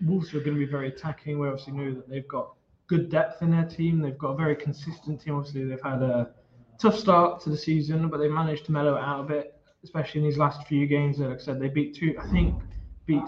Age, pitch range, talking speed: 20-39, 135-160 Hz, 260 wpm